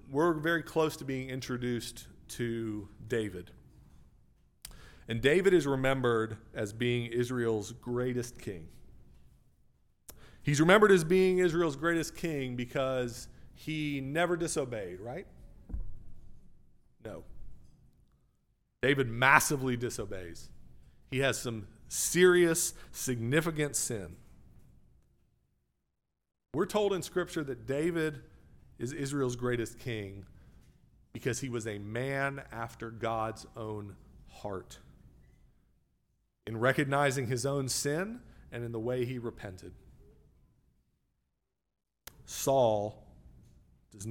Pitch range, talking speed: 105-140 Hz, 95 wpm